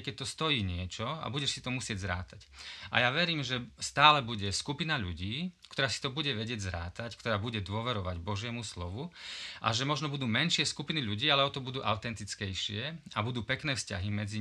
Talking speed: 190 wpm